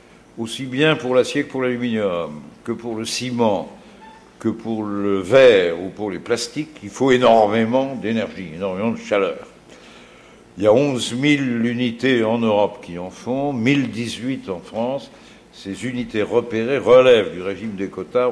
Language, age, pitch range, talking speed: French, 60-79, 100-130 Hz, 155 wpm